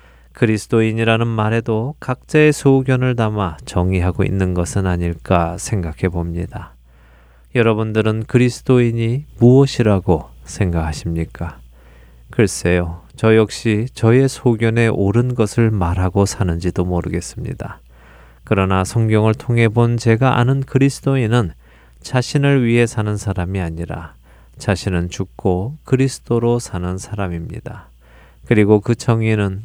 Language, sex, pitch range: Korean, male, 85-120 Hz